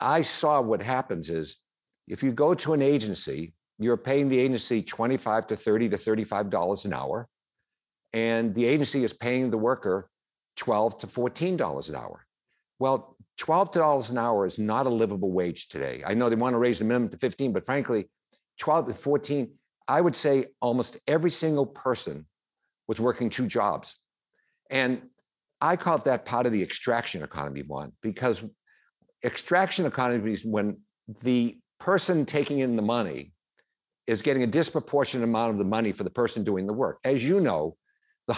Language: English